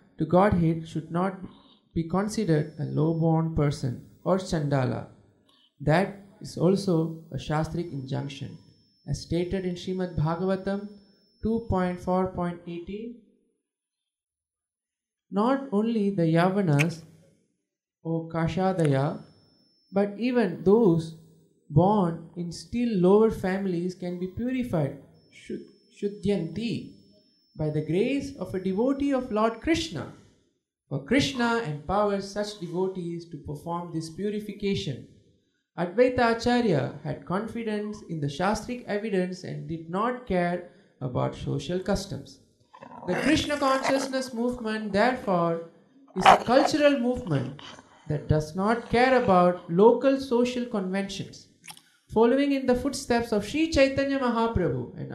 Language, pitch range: English, 165-225 Hz